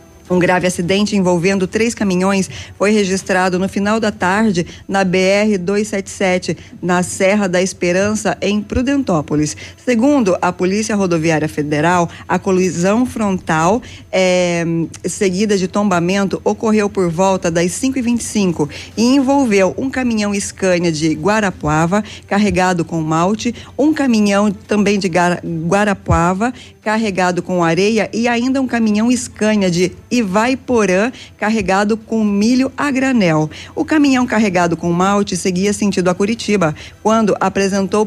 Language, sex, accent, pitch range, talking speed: Portuguese, female, Brazilian, 180-220 Hz, 130 wpm